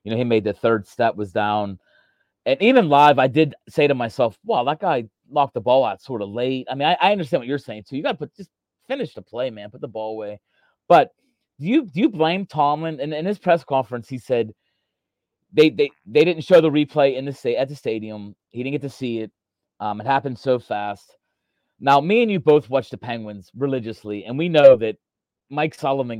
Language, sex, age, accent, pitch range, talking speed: English, male, 30-49, American, 110-150 Hz, 235 wpm